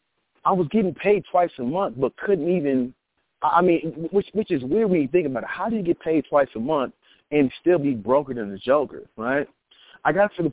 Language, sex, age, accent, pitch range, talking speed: English, male, 30-49, American, 135-190 Hz, 235 wpm